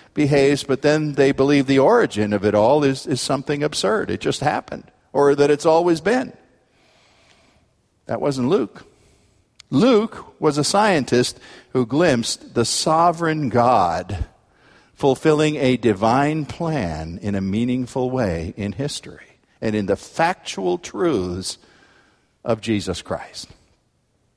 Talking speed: 130 wpm